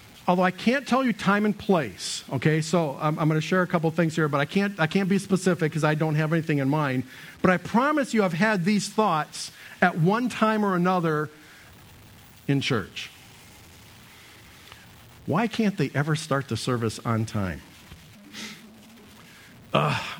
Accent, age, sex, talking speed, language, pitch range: American, 50-69, male, 165 wpm, English, 130-205 Hz